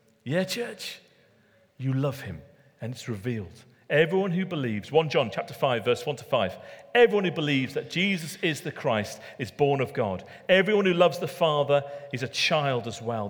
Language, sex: English, male